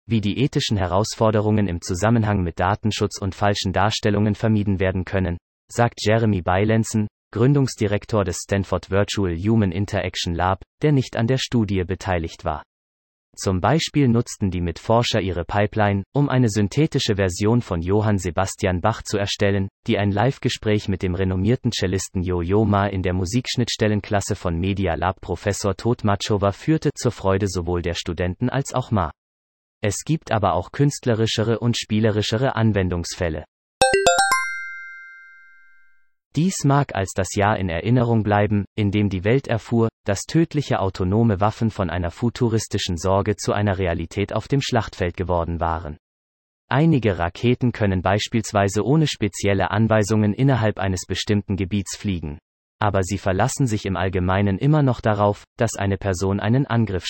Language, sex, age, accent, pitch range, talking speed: German, male, 30-49, German, 95-115 Hz, 145 wpm